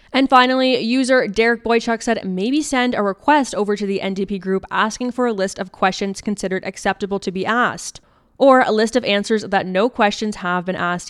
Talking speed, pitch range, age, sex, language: 200 wpm, 185-225 Hz, 20-39, female, English